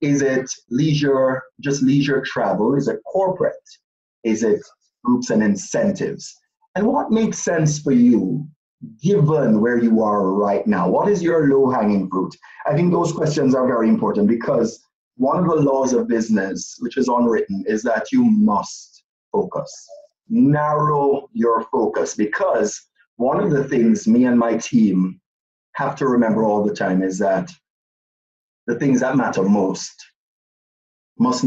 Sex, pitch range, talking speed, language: male, 115-180 Hz, 150 wpm, English